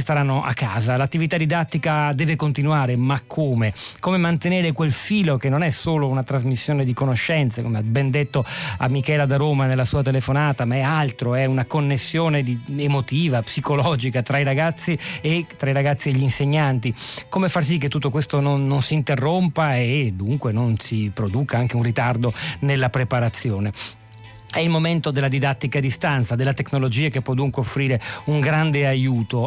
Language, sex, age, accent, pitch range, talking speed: Italian, male, 40-59, native, 120-145 Hz, 175 wpm